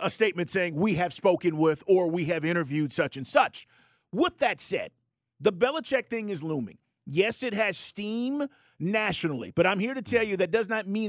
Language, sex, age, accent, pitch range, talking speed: English, male, 50-69, American, 165-260 Hz, 200 wpm